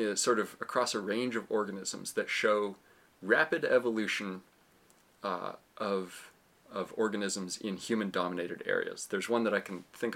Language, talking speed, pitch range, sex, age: English, 140 wpm, 95-120 Hz, male, 30-49